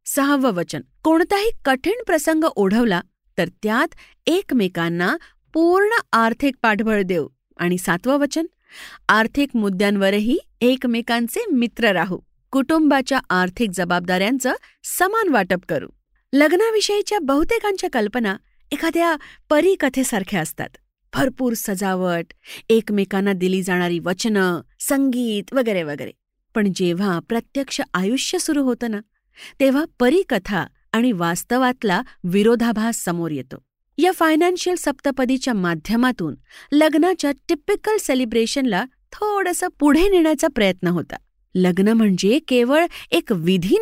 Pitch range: 195-305 Hz